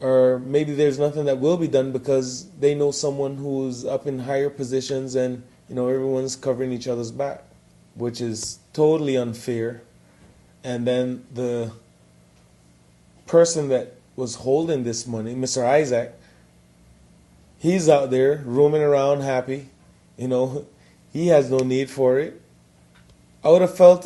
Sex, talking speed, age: male, 145 wpm, 20-39